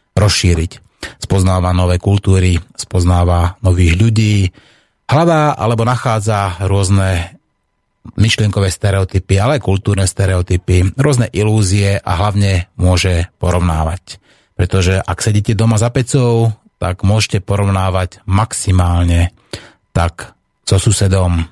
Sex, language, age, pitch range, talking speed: male, Slovak, 30-49, 90-110 Hz, 100 wpm